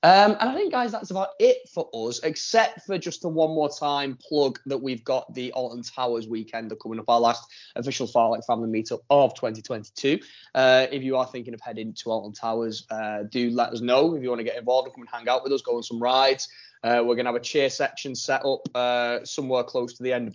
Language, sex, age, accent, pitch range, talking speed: English, male, 20-39, British, 115-150 Hz, 250 wpm